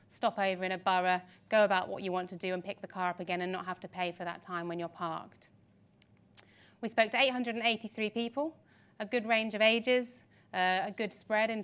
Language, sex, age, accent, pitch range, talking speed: English, female, 30-49, British, 185-210 Hz, 225 wpm